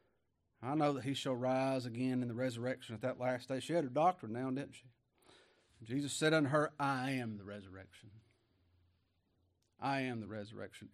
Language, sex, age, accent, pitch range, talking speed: English, male, 40-59, American, 105-135 Hz, 180 wpm